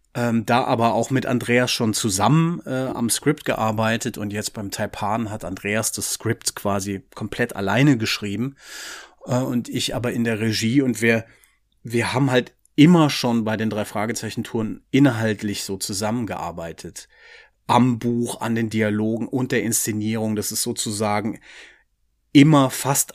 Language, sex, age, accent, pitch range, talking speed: German, male, 30-49, German, 100-125 Hz, 150 wpm